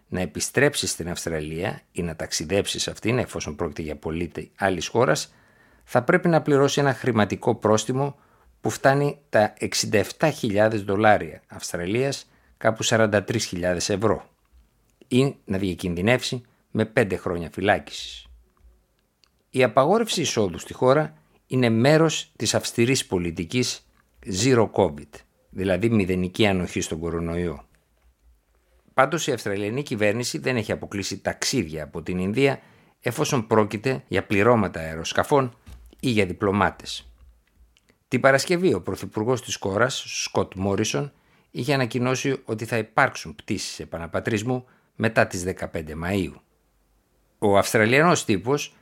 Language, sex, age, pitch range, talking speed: Greek, male, 60-79, 90-130 Hz, 115 wpm